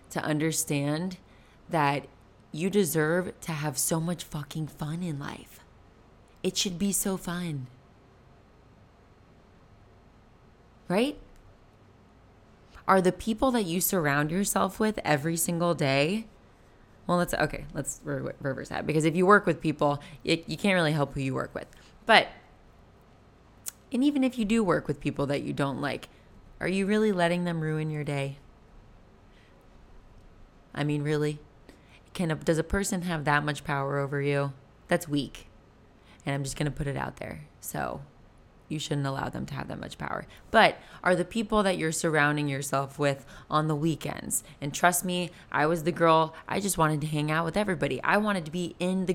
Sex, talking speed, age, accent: female, 170 wpm, 20-39, American